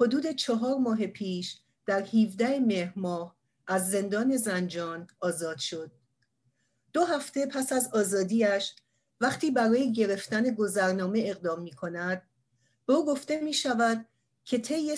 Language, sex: Persian, female